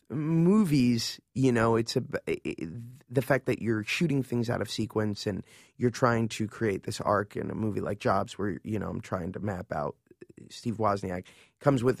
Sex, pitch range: male, 105-125 Hz